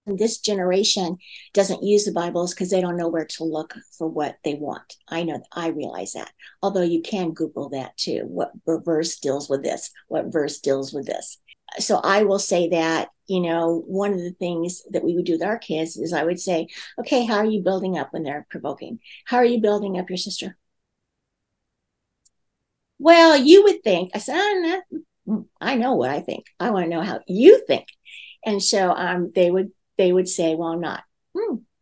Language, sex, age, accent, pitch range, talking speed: English, female, 50-69, American, 170-245 Hz, 205 wpm